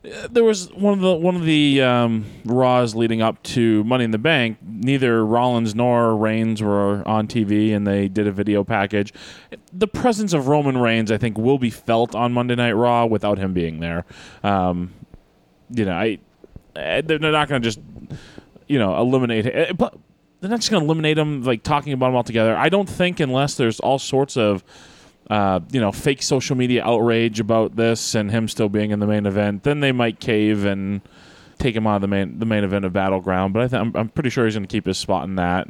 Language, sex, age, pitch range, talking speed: English, male, 20-39, 105-145 Hz, 215 wpm